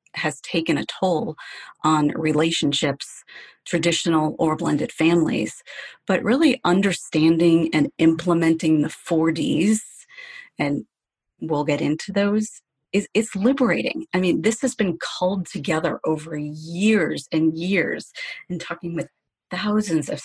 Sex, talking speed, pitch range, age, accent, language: female, 125 wpm, 160-205 Hz, 30-49, American, English